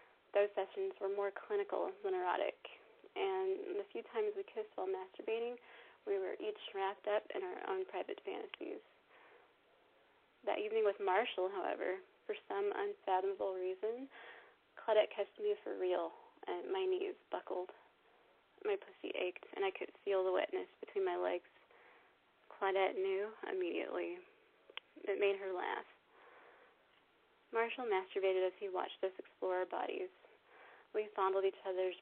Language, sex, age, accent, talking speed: English, female, 20-39, American, 140 wpm